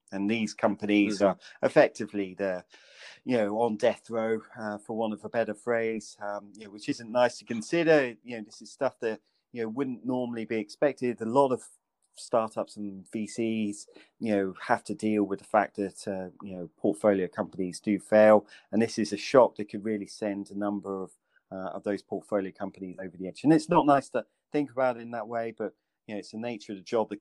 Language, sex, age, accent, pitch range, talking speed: English, male, 30-49, British, 105-125 Hz, 225 wpm